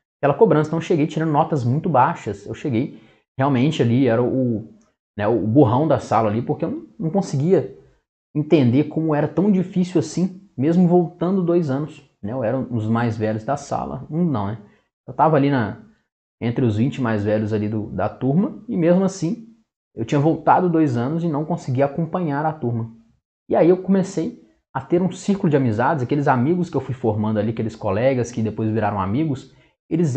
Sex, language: male, Portuguese